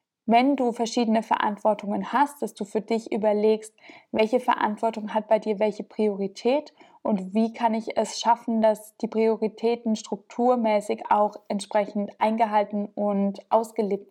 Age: 20-39